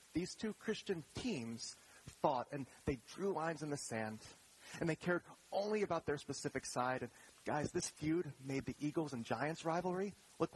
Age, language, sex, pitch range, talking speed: 30-49, English, male, 125-180 Hz, 175 wpm